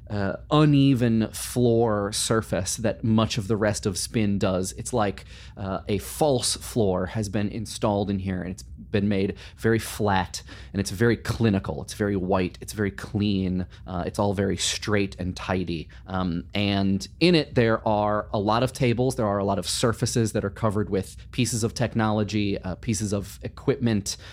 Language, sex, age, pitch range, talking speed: English, male, 30-49, 95-120 Hz, 180 wpm